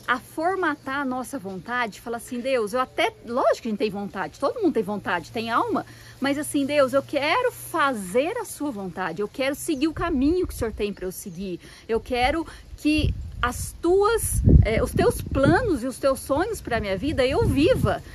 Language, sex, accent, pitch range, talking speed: Portuguese, female, Brazilian, 215-320 Hz, 205 wpm